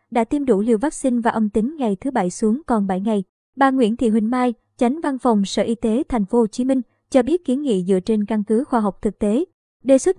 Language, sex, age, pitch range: Vietnamese, male, 20-39, 215-260 Hz